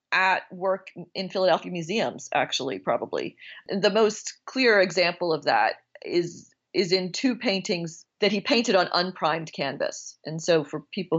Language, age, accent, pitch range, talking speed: English, 40-59, American, 165-210 Hz, 150 wpm